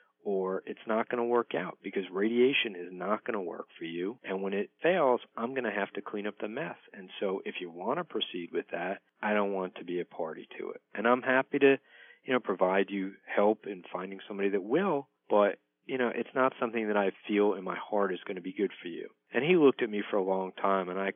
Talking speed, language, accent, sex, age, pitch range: 260 wpm, English, American, male, 50-69, 95-120 Hz